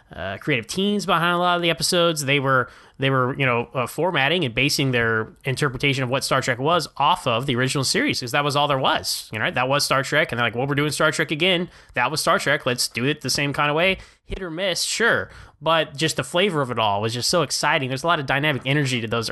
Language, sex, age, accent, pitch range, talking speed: English, male, 10-29, American, 125-165 Hz, 275 wpm